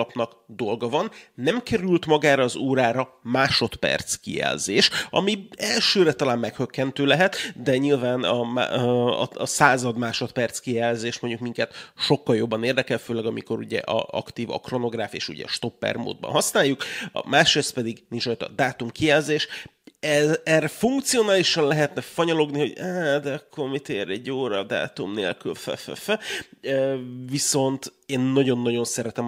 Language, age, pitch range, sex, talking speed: Hungarian, 30-49, 115-145 Hz, male, 140 wpm